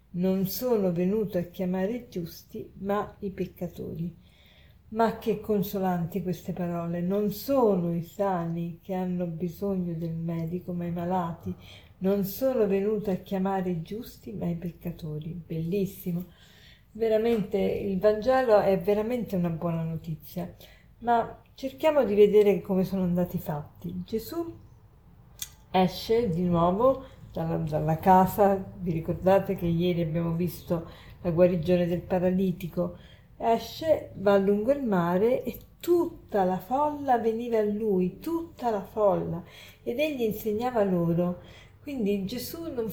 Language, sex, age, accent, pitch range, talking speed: Italian, female, 40-59, native, 175-225 Hz, 130 wpm